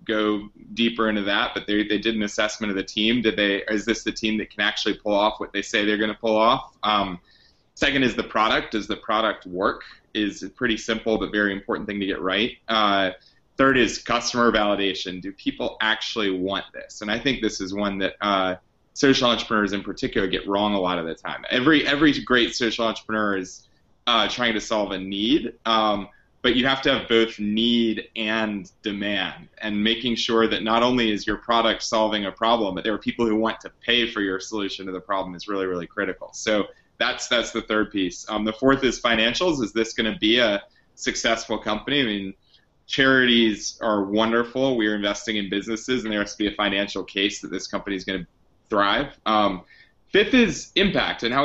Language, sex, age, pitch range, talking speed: English, male, 30-49, 100-115 Hz, 210 wpm